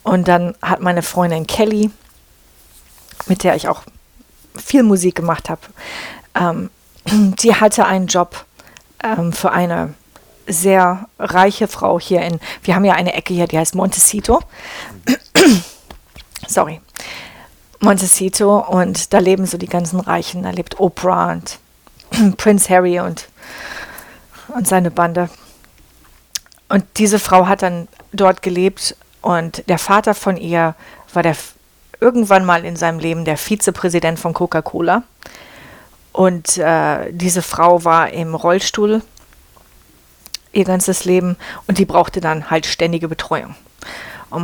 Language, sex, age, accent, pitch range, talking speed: German, female, 40-59, German, 170-200 Hz, 130 wpm